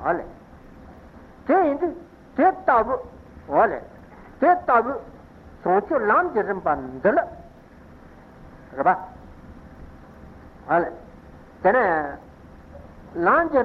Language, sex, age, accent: Italian, male, 60-79, Indian